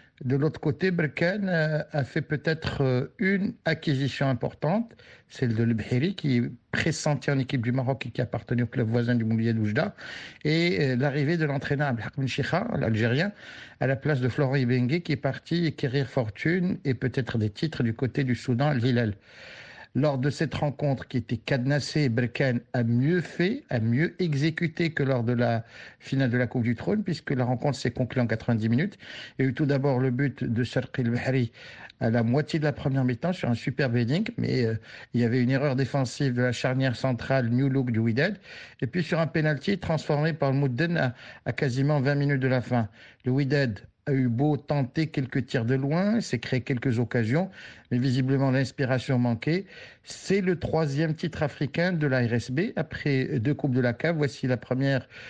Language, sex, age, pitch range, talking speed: French, male, 60-79, 125-150 Hz, 195 wpm